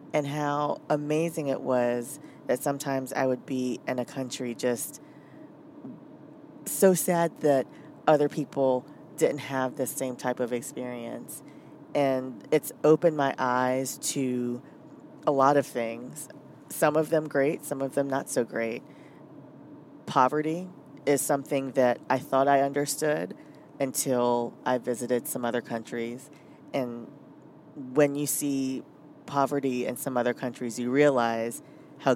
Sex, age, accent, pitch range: female, 40-59, American, 125-150 Hz